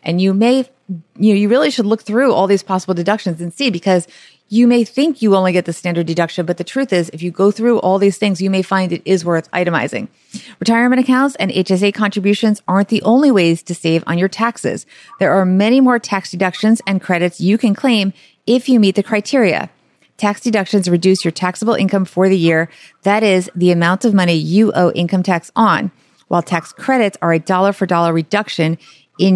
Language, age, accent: English, 30-49, American